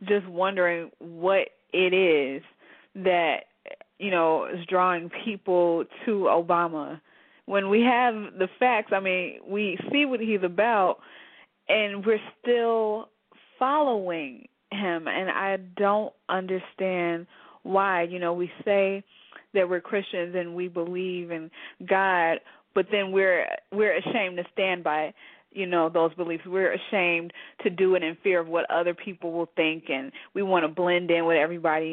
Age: 20-39